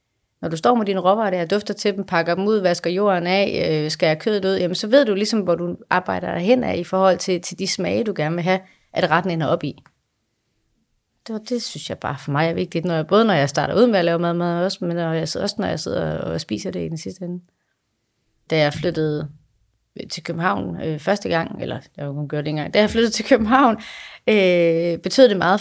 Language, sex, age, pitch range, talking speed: Danish, female, 30-49, 160-200 Hz, 240 wpm